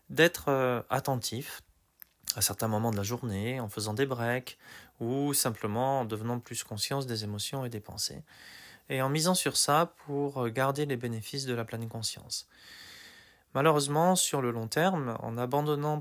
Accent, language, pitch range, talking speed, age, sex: French, French, 110-140 Hz, 160 wpm, 20-39, male